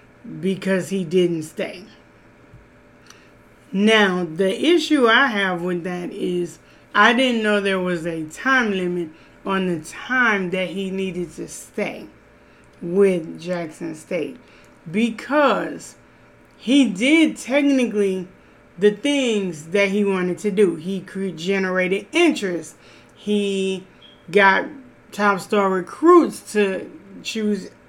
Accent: American